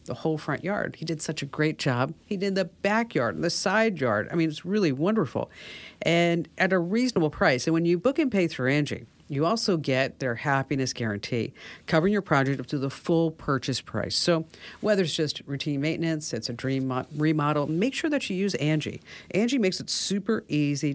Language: English